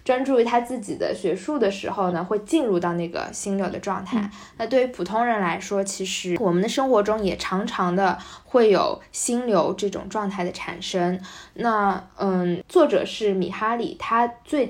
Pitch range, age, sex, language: 185-235 Hz, 10-29, female, Chinese